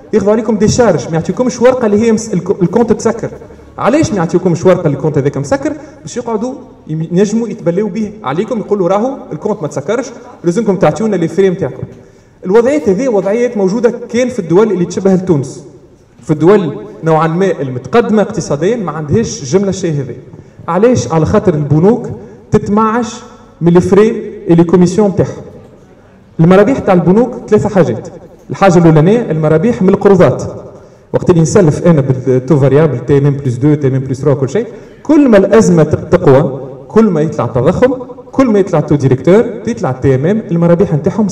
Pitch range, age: 150-215 Hz, 30-49